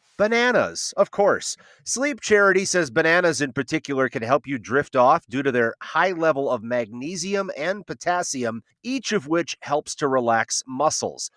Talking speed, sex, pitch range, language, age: 160 wpm, male, 125-195 Hz, English, 30-49